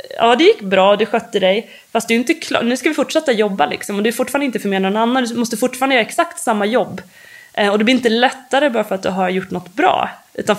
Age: 20-39